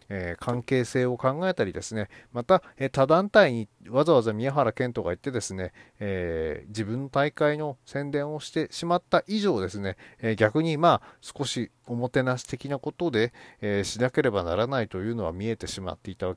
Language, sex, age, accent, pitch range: Japanese, male, 40-59, native, 105-155 Hz